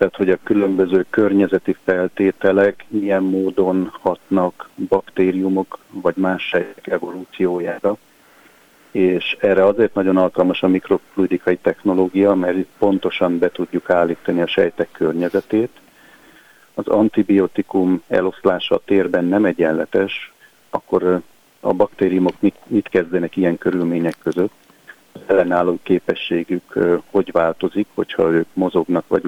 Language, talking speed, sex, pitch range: Hungarian, 115 wpm, male, 90-95 Hz